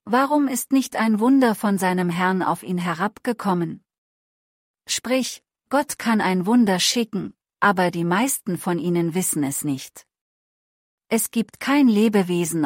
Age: 40-59